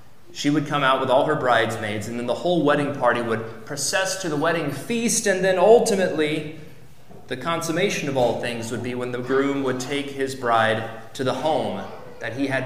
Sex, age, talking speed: male, 30-49, 205 wpm